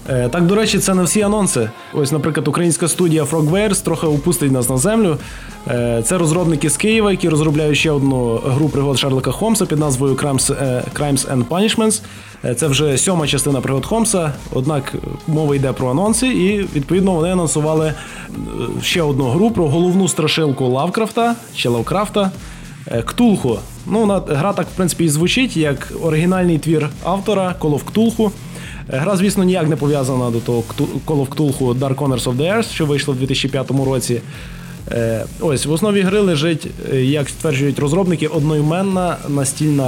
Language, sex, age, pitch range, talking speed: Russian, male, 20-39, 135-175 Hz, 155 wpm